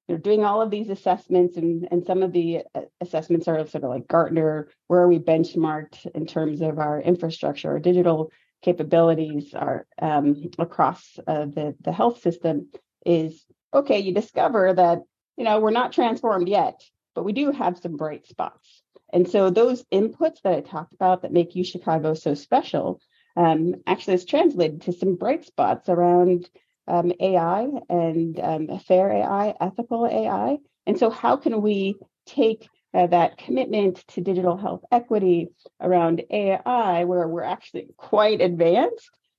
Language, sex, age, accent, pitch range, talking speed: English, female, 30-49, American, 165-205 Hz, 160 wpm